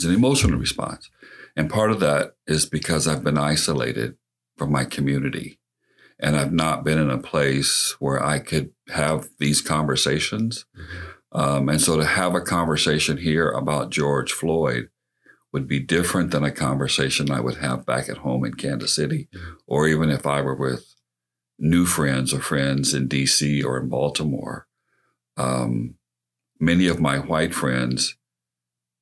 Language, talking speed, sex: English, 155 wpm, male